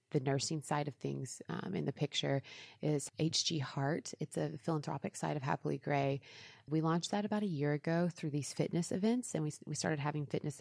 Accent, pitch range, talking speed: American, 140-160 Hz, 205 wpm